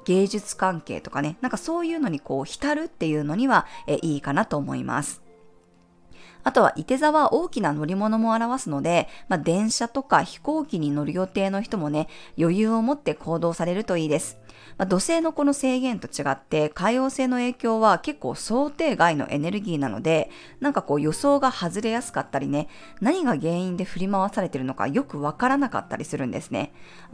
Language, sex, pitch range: Japanese, female, 150-245 Hz